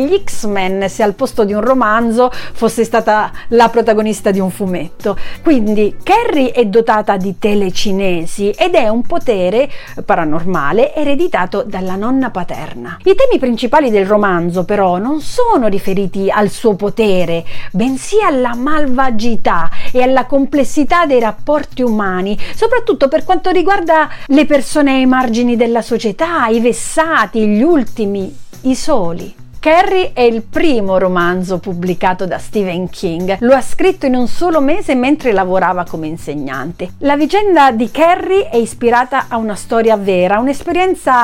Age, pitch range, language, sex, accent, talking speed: 40-59, 200-280 Hz, Italian, female, native, 140 wpm